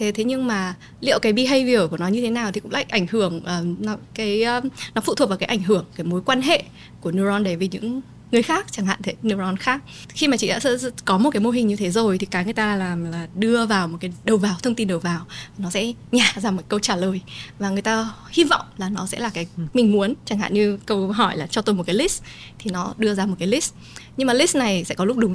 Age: 20-39